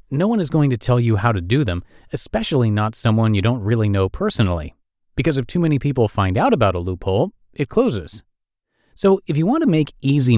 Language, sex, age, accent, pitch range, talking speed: English, male, 30-49, American, 95-140 Hz, 220 wpm